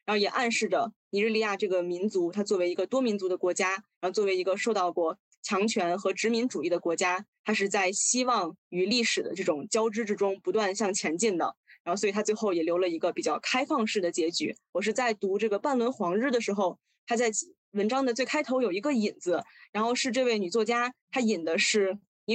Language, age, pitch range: Chinese, 20-39, 195-235 Hz